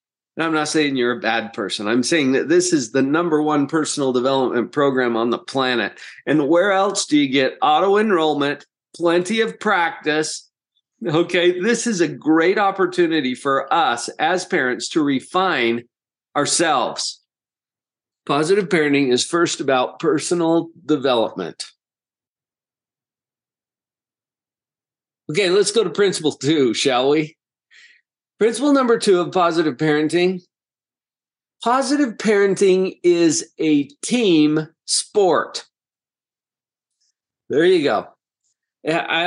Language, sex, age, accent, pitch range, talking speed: English, male, 40-59, American, 150-215 Hz, 115 wpm